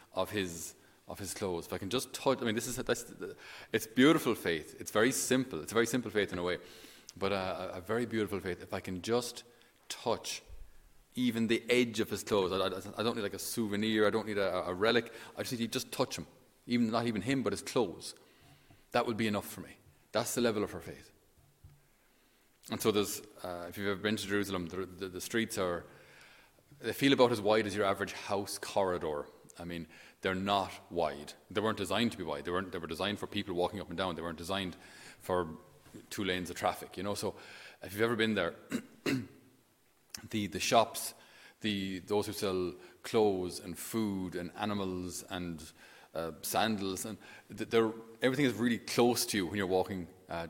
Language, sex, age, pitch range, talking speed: English, male, 30-49, 90-115 Hz, 210 wpm